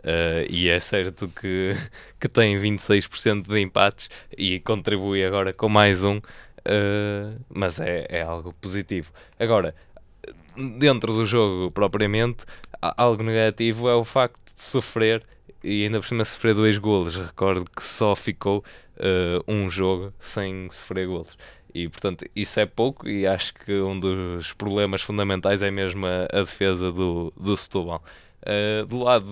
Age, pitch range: 20-39, 95-105 Hz